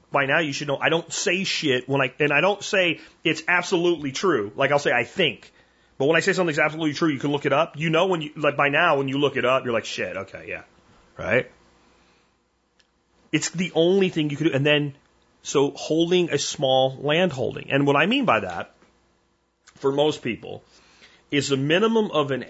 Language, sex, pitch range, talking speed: English, male, 135-165 Hz, 220 wpm